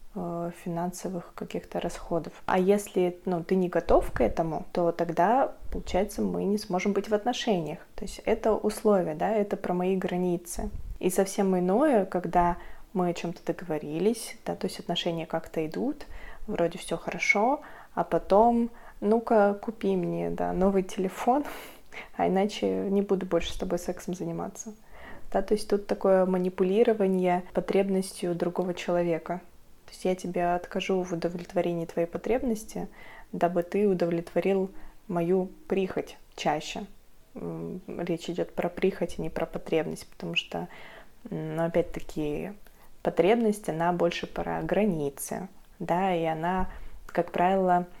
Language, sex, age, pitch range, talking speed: Russian, female, 20-39, 170-205 Hz, 135 wpm